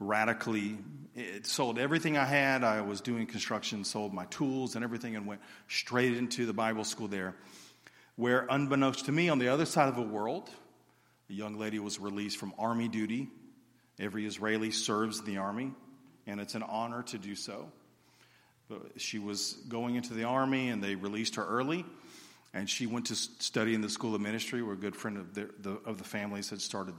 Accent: American